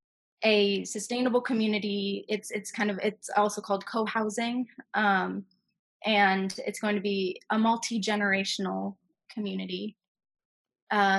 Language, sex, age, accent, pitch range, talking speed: English, female, 20-39, American, 185-210 Hz, 115 wpm